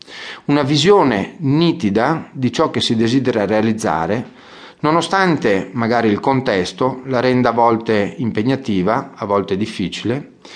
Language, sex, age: Italian, male, 40-59